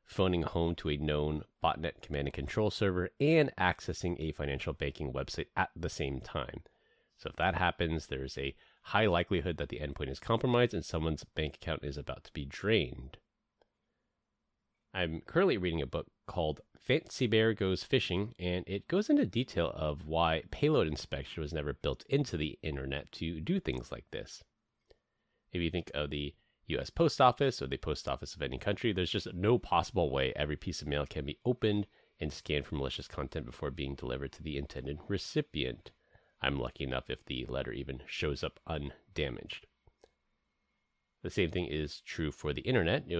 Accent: American